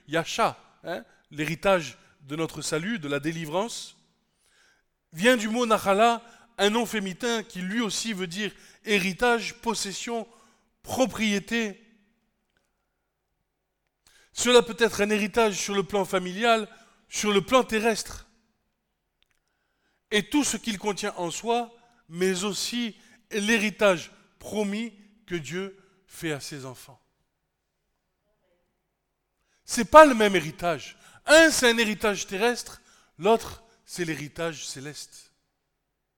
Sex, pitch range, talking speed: male, 195-250 Hz, 115 wpm